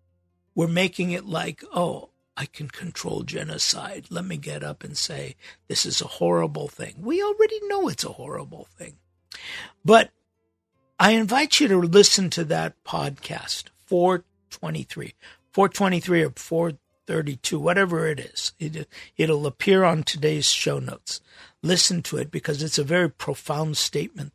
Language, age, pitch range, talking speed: English, 60-79, 140-190 Hz, 145 wpm